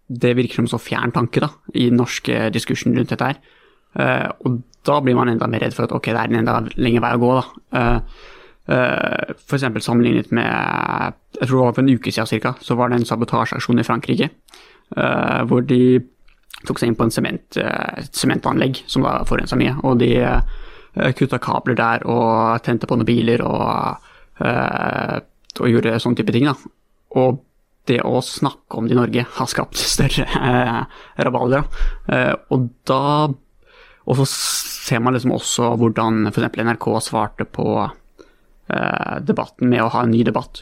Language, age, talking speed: English, 20-39, 175 wpm